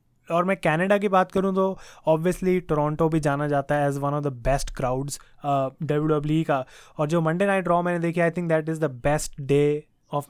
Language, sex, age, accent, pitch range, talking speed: Hindi, male, 20-39, native, 150-180 Hz, 215 wpm